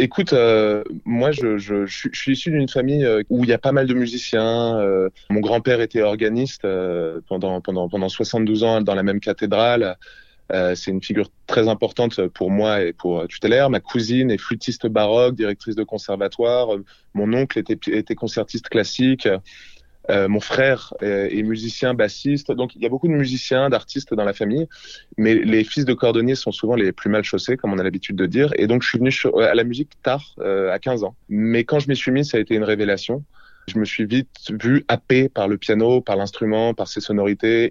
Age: 20-39